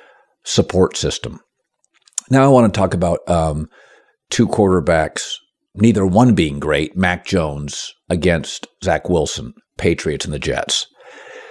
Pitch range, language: 80-100 Hz, English